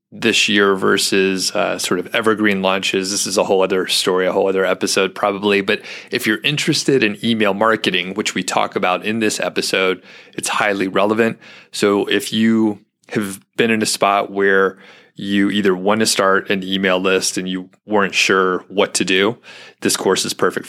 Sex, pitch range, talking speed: male, 95-105 Hz, 185 wpm